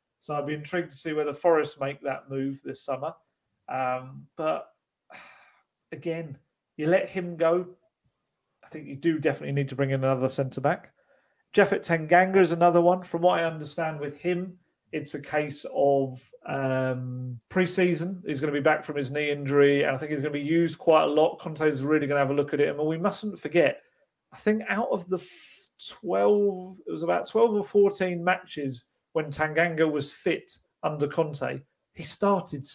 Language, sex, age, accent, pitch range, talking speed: English, male, 40-59, British, 145-180 Hz, 190 wpm